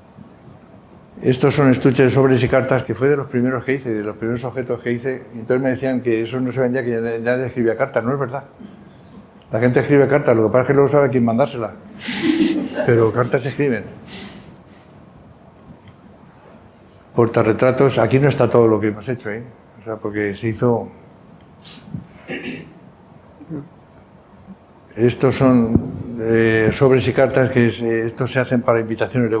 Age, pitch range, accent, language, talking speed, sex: 60-79, 115-130 Hz, Spanish, Spanish, 165 wpm, male